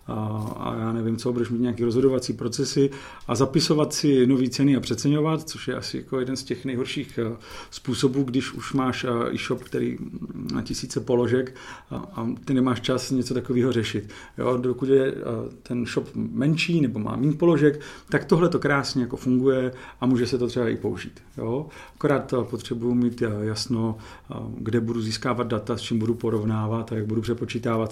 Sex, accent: male, native